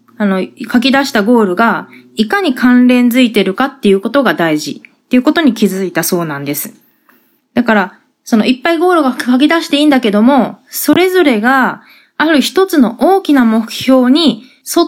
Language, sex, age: Japanese, female, 20-39